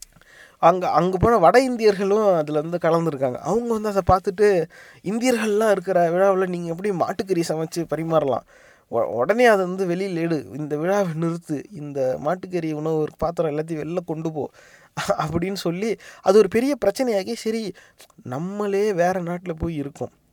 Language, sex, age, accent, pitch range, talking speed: Tamil, male, 20-39, native, 165-215 Hz, 140 wpm